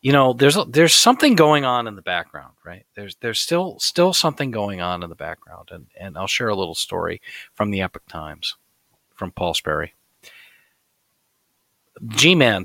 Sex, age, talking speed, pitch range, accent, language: male, 40-59, 175 wpm, 100-130 Hz, American, English